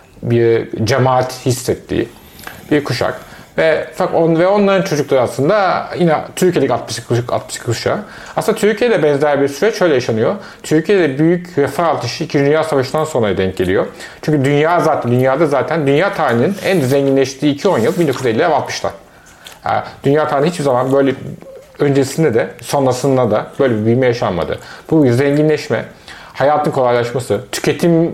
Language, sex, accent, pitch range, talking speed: Turkish, male, native, 125-160 Hz, 130 wpm